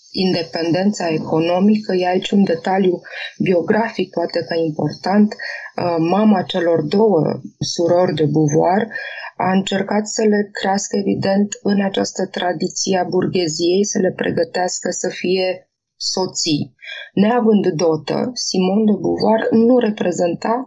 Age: 20-39